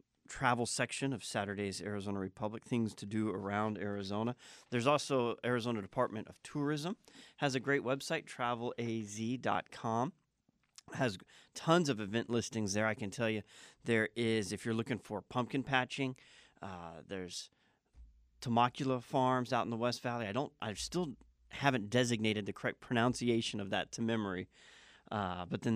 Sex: male